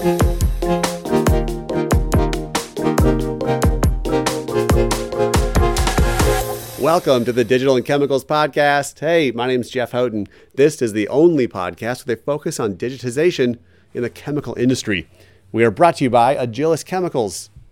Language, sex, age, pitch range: English, male, 40-59, 105-140 Hz